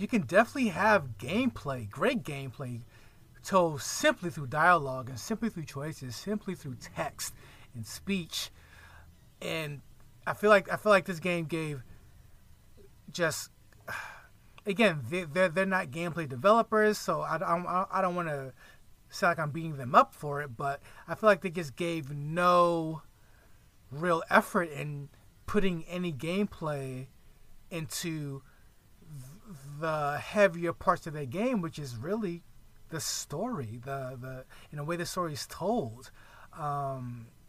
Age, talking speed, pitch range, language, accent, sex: 30-49, 140 wpm, 125-180 Hz, English, American, male